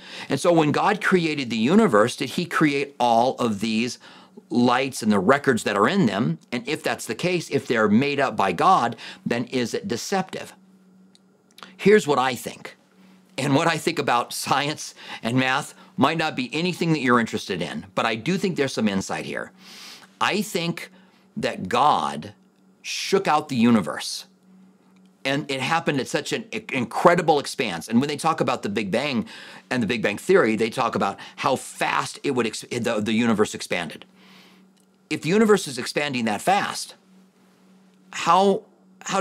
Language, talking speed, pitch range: English, 175 wpm, 140-195 Hz